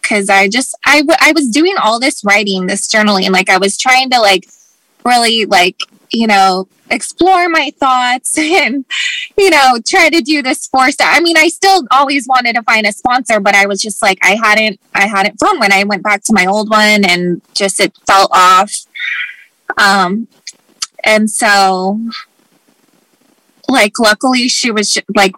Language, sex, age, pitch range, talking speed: English, female, 20-39, 200-260 Hz, 180 wpm